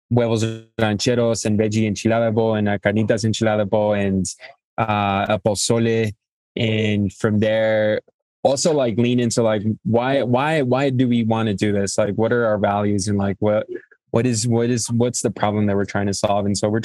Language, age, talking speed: English, 20-39, 180 wpm